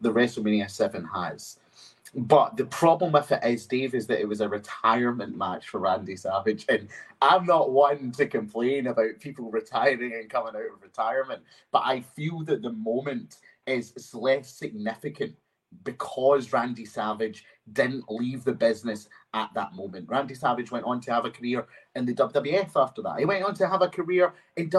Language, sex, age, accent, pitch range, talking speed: English, male, 30-49, British, 115-150 Hz, 180 wpm